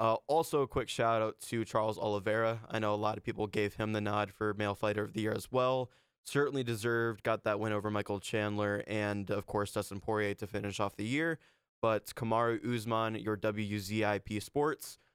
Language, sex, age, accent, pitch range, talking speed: English, male, 20-39, American, 110-125 Hz, 200 wpm